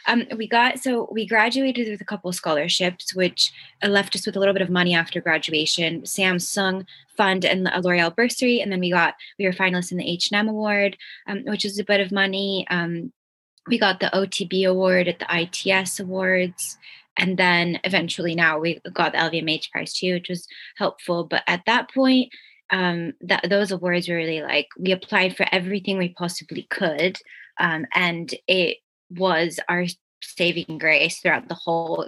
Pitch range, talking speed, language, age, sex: 170-200 Hz, 180 wpm, English, 20-39, female